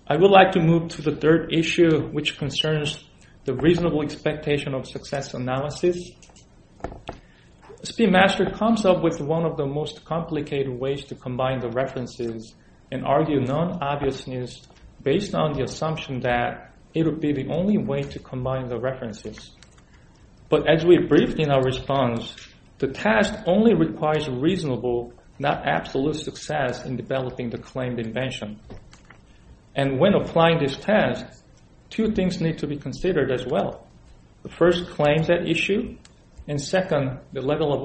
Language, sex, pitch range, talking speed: English, male, 130-170 Hz, 145 wpm